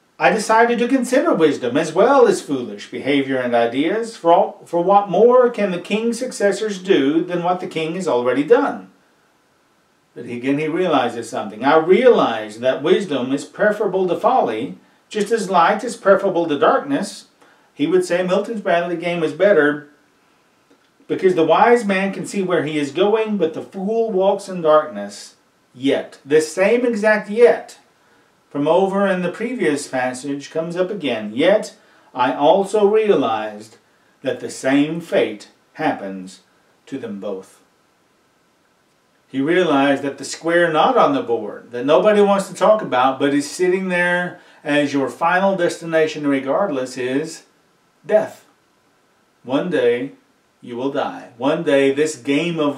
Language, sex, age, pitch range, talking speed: English, male, 50-69, 145-205 Hz, 155 wpm